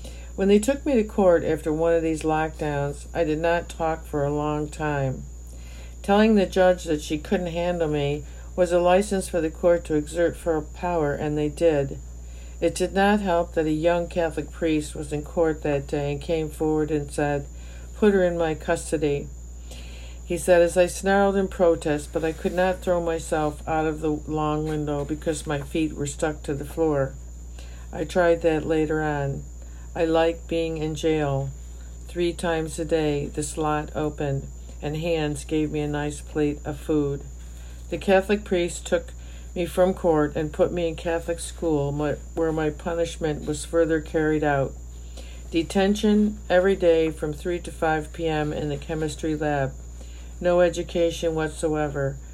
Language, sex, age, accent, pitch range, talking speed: English, female, 60-79, American, 145-170 Hz, 175 wpm